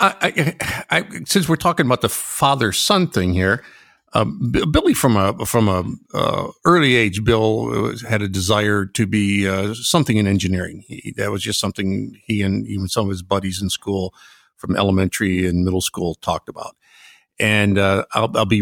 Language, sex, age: English, male, 50-69